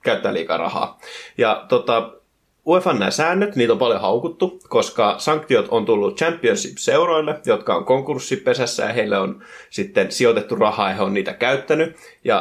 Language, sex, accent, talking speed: Finnish, male, native, 155 wpm